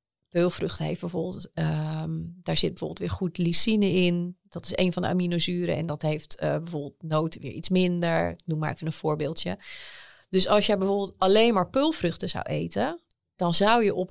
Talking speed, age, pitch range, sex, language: 185 wpm, 30-49, 165-195 Hz, female, Dutch